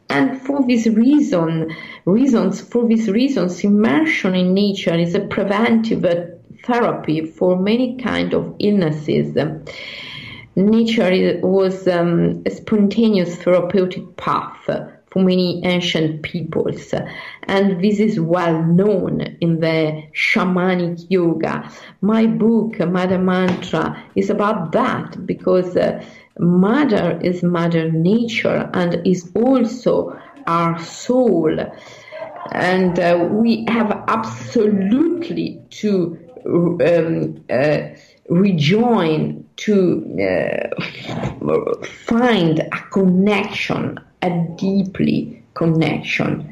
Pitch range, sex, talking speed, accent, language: 170-220 Hz, female, 105 wpm, native, Italian